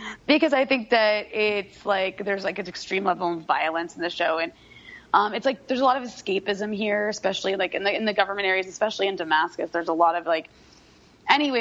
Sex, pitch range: female, 170-205 Hz